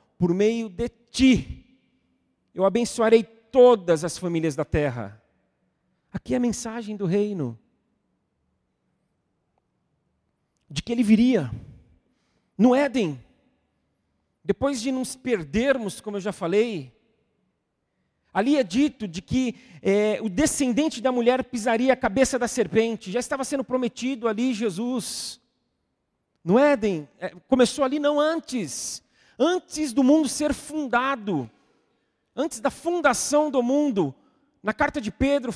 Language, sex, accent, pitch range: Portuguese, male, Brazilian, 205-270 Hz